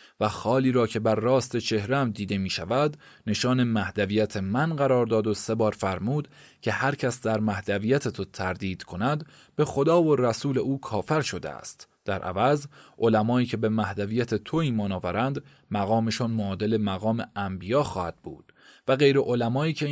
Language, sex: Persian, male